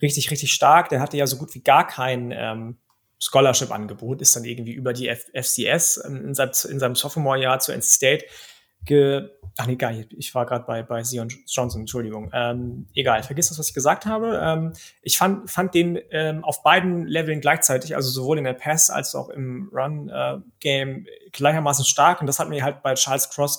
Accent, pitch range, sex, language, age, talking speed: German, 130-155 Hz, male, German, 30-49, 205 wpm